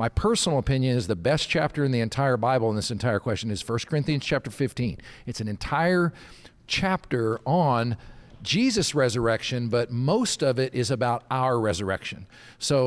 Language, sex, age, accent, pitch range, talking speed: English, male, 50-69, American, 120-155 Hz, 170 wpm